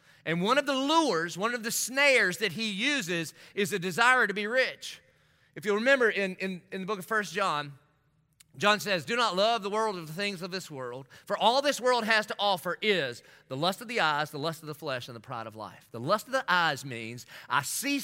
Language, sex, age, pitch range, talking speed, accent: English, male, 30-49, 155-230 Hz, 245 wpm, American